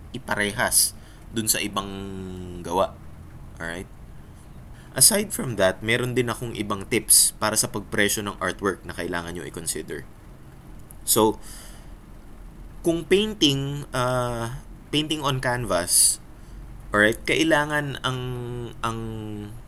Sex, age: male, 20-39